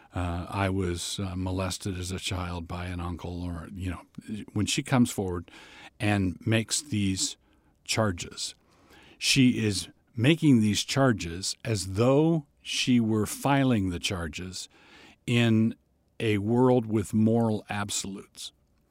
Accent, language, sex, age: American, English, male, 50-69